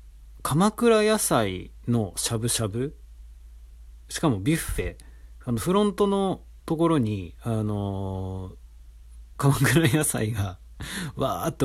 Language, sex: Japanese, male